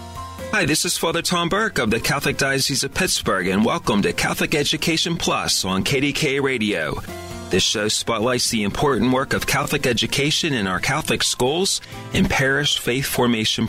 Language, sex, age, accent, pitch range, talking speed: English, male, 40-59, American, 100-135 Hz, 165 wpm